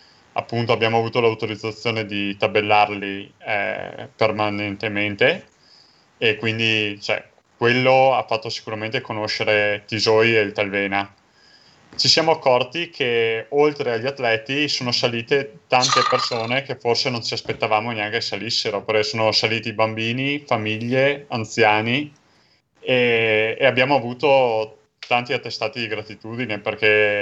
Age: 30-49